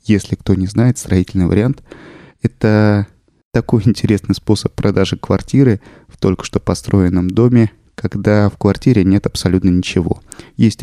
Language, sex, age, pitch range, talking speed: Russian, male, 20-39, 95-110 Hz, 135 wpm